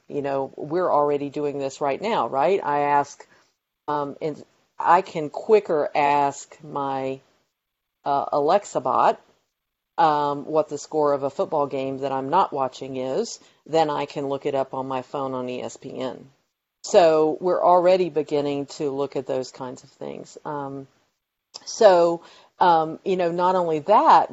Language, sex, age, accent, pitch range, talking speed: English, female, 50-69, American, 140-170 Hz, 160 wpm